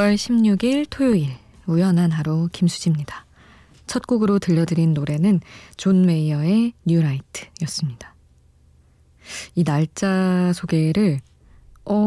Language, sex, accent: Korean, female, native